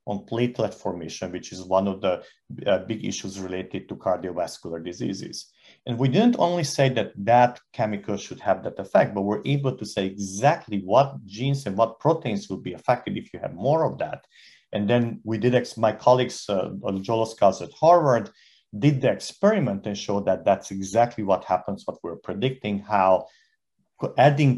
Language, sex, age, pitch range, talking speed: English, male, 50-69, 100-135 Hz, 180 wpm